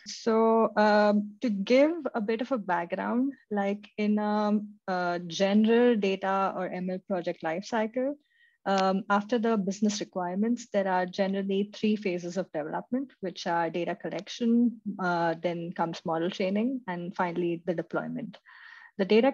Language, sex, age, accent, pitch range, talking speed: English, female, 20-39, Indian, 170-210 Hz, 135 wpm